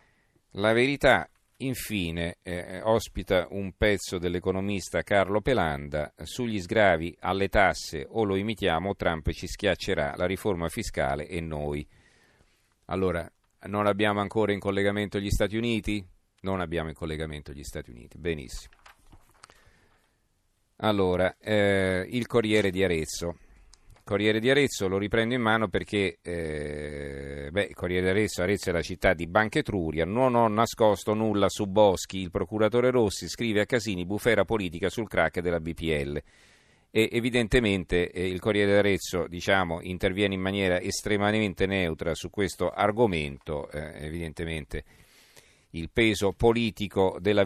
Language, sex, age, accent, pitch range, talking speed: Italian, male, 40-59, native, 85-105 Hz, 140 wpm